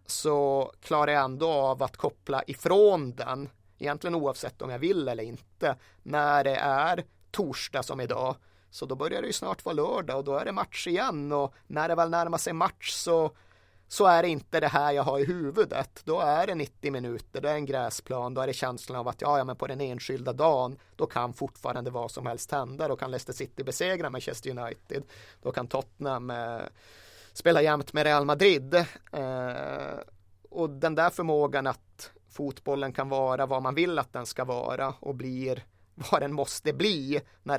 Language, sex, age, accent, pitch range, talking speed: Swedish, male, 30-49, native, 125-150 Hz, 195 wpm